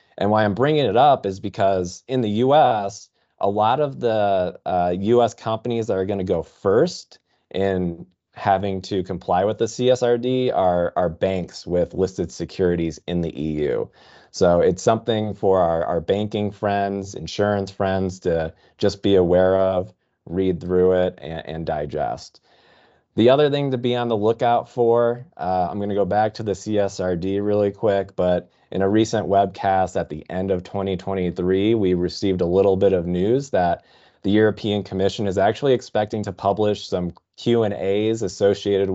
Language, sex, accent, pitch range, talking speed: English, male, American, 90-105 Hz, 170 wpm